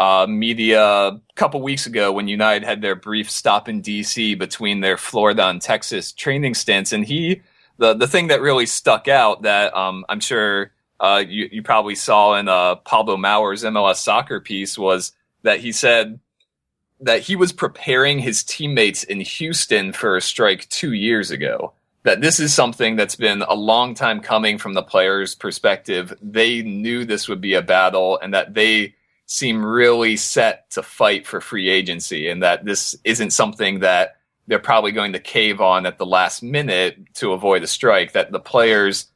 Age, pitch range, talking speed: 20-39, 100-125 Hz, 180 wpm